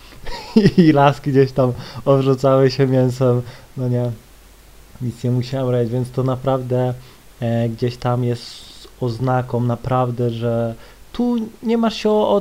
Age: 20-39